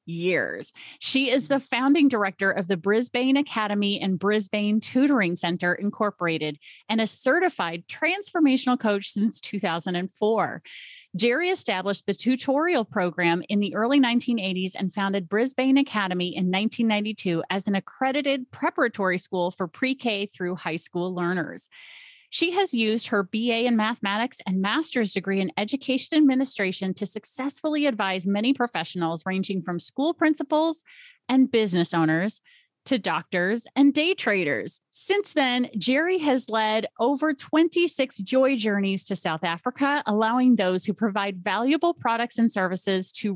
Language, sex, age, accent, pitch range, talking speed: English, female, 30-49, American, 190-265 Hz, 135 wpm